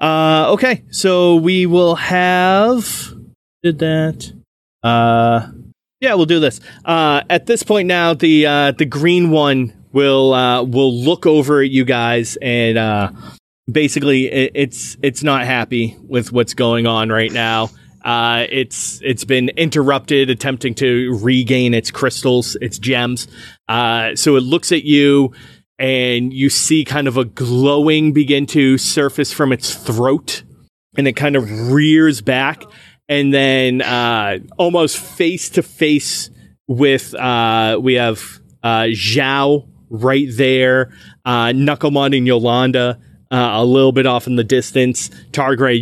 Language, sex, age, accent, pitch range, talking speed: English, male, 20-39, American, 120-145 Hz, 140 wpm